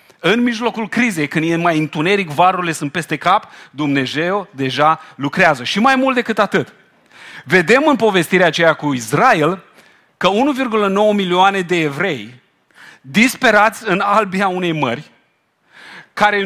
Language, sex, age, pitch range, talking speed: Romanian, male, 40-59, 150-210 Hz, 130 wpm